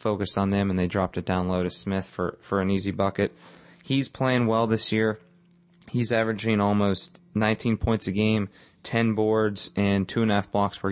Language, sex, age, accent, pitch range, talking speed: English, male, 20-39, American, 95-110 Hz, 205 wpm